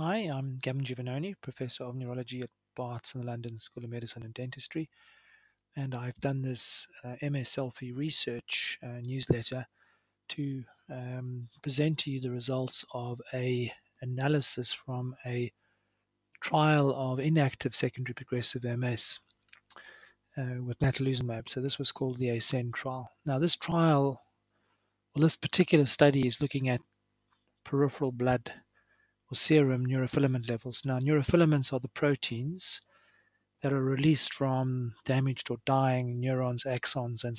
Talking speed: 135 wpm